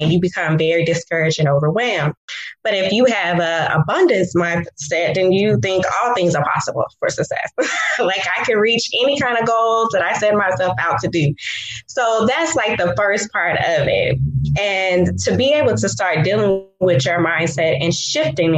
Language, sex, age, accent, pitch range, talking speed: English, female, 20-39, American, 170-215 Hz, 185 wpm